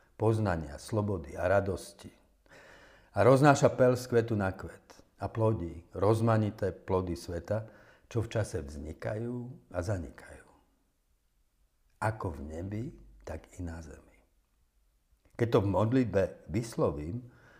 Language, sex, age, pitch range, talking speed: Slovak, male, 50-69, 85-115 Hz, 115 wpm